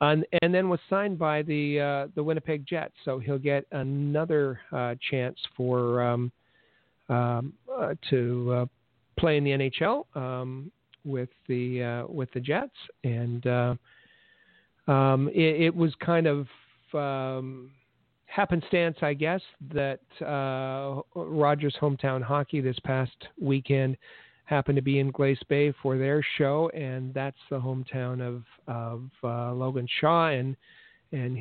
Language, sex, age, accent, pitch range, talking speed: English, male, 50-69, American, 125-145 Hz, 140 wpm